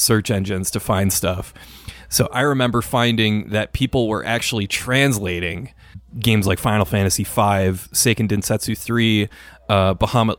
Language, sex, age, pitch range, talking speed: English, male, 30-49, 100-120 Hz, 135 wpm